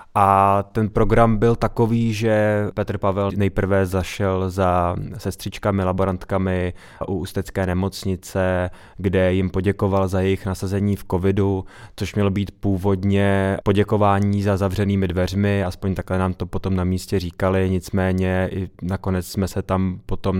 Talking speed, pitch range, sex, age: 140 wpm, 90-100 Hz, male, 20-39